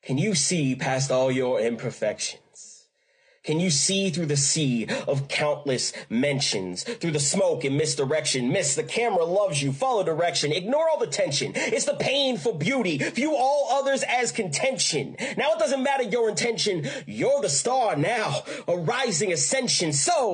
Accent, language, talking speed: American, English, 160 wpm